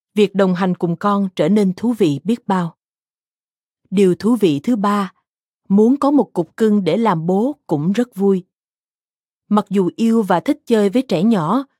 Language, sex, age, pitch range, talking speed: Vietnamese, female, 20-39, 180-230 Hz, 185 wpm